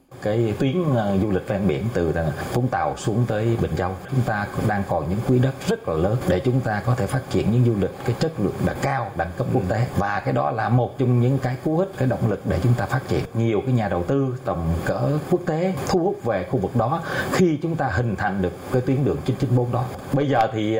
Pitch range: 105-130 Hz